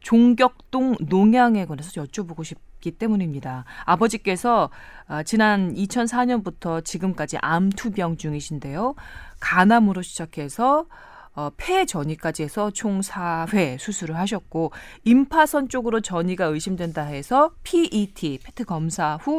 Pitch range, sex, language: 165-235 Hz, female, Korean